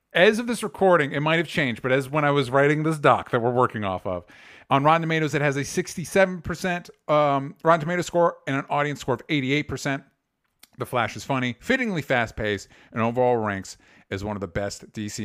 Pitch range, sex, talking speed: 110-160 Hz, male, 210 wpm